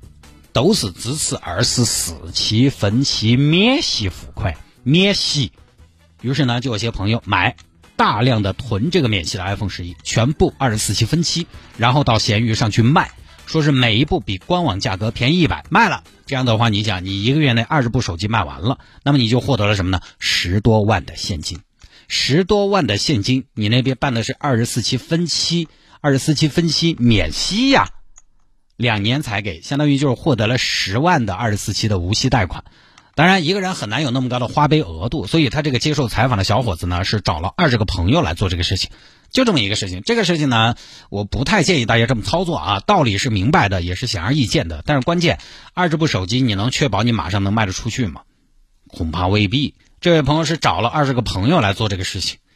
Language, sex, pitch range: Chinese, male, 100-150 Hz